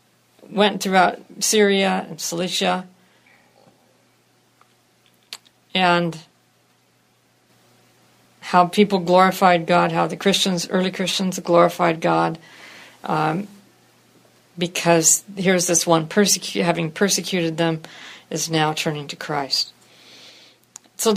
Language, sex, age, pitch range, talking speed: English, female, 50-69, 165-190 Hz, 90 wpm